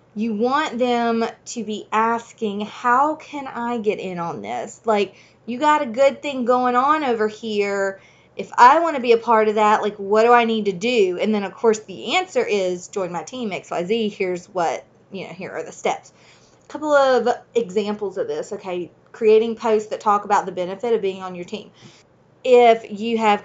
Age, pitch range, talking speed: 30-49, 195-240 Hz, 205 wpm